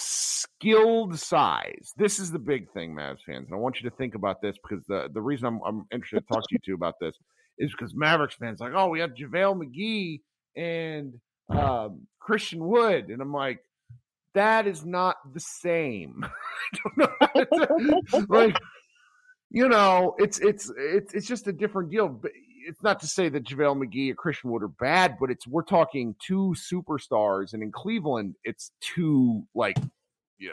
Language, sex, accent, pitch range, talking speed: English, male, American, 120-195 Hz, 185 wpm